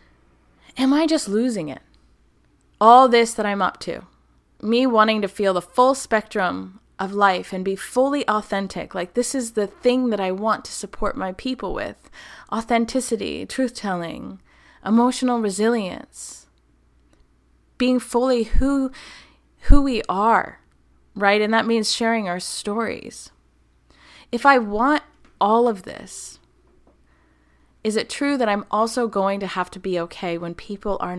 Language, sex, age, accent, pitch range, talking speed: English, female, 20-39, American, 170-230 Hz, 145 wpm